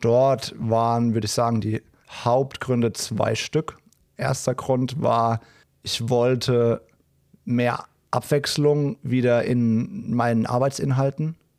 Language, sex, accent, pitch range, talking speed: German, male, German, 115-130 Hz, 105 wpm